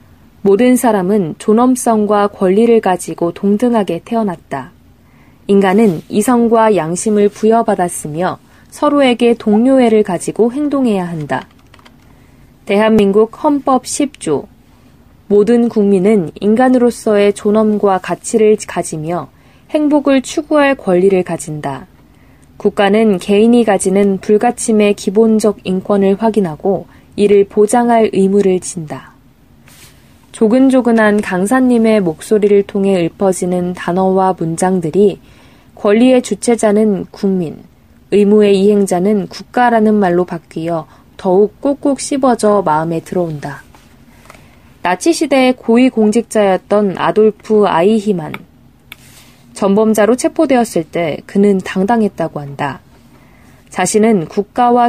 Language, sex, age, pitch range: Korean, female, 20-39, 185-225 Hz